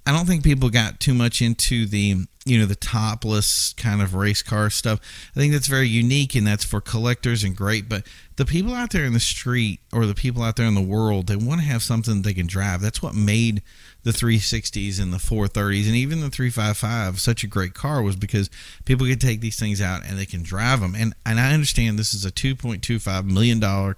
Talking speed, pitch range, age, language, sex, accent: 230 wpm, 100-125 Hz, 40-59, English, male, American